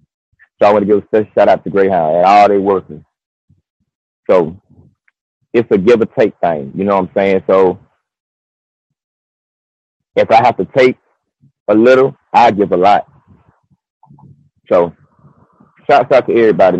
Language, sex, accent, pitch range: English, male, American, 95-115 Hz